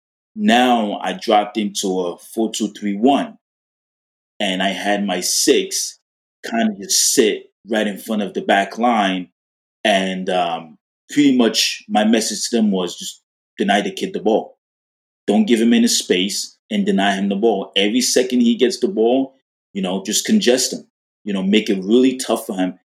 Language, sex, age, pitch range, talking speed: English, male, 20-39, 95-140 Hz, 175 wpm